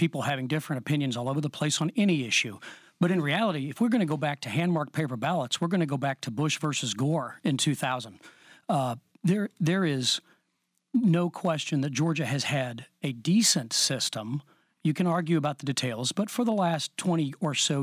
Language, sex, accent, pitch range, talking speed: English, male, American, 135-170 Hz, 205 wpm